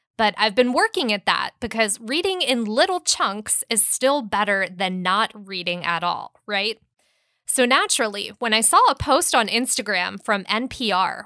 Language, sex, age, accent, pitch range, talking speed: English, female, 20-39, American, 205-265 Hz, 165 wpm